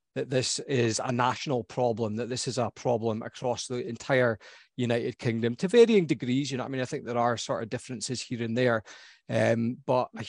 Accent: British